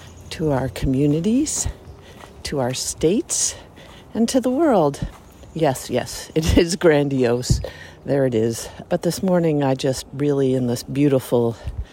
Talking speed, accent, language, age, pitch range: 135 wpm, American, English, 50-69, 125-175 Hz